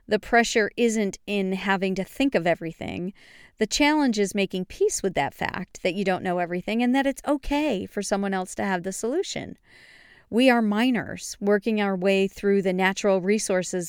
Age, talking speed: 40-59, 185 wpm